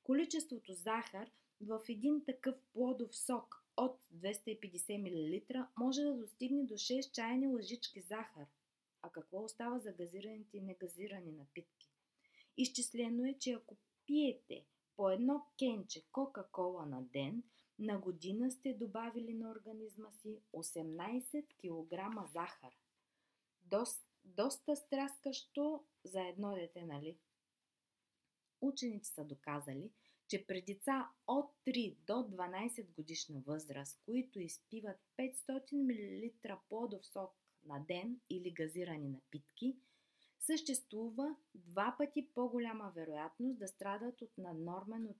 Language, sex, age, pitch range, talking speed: Bulgarian, female, 20-39, 180-255 Hz, 115 wpm